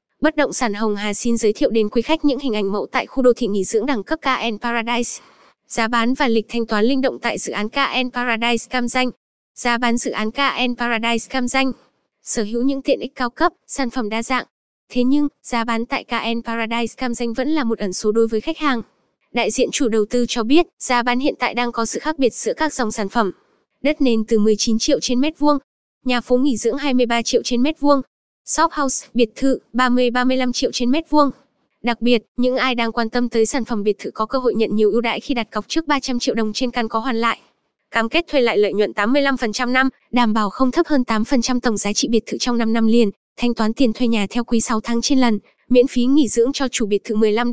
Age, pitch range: 10-29, 230-265 Hz